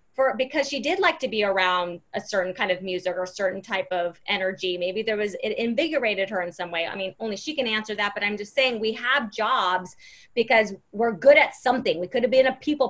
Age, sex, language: 30-49, female, English